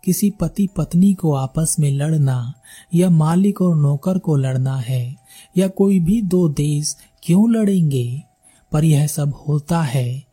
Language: Hindi